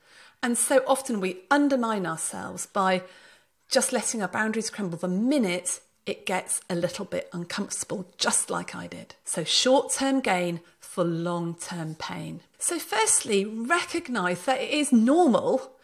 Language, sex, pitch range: English, female, 190-260 Hz